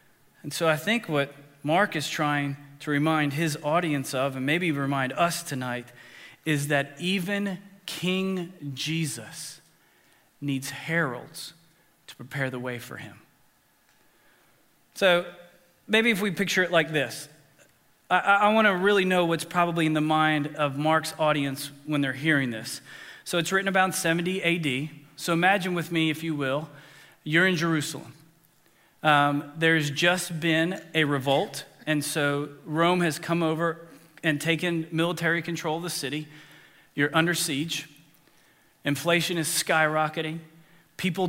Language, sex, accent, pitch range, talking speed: English, male, American, 150-175 Hz, 145 wpm